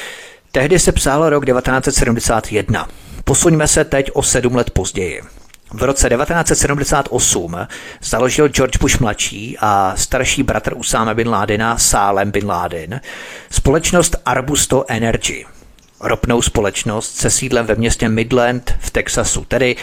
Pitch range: 110-130 Hz